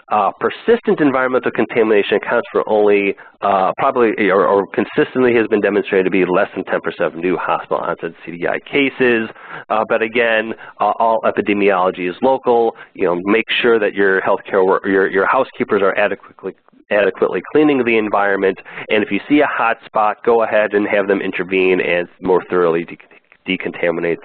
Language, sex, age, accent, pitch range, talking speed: English, male, 30-49, American, 100-130 Hz, 170 wpm